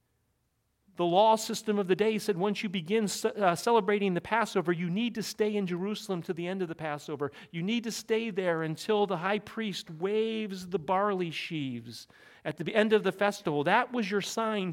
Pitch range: 185-255 Hz